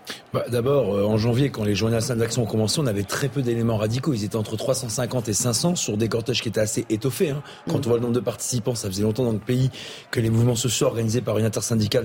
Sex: male